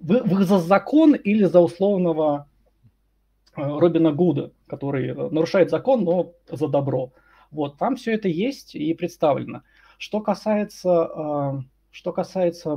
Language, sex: Russian, male